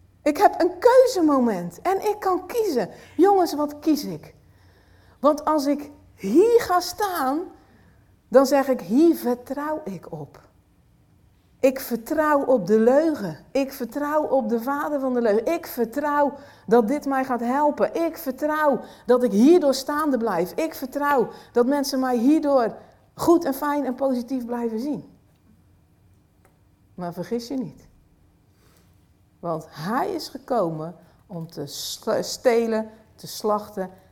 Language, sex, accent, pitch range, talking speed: Dutch, female, Dutch, 215-295 Hz, 135 wpm